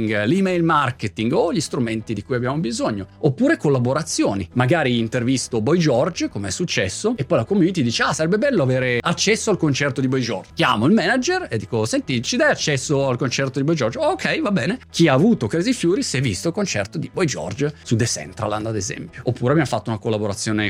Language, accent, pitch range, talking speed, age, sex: Italian, native, 115-160 Hz, 220 wpm, 30-49, male